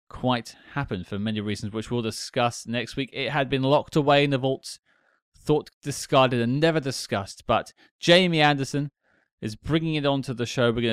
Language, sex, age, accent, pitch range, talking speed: English, male, 20-39, British, 110-145 Hz, 185 wpm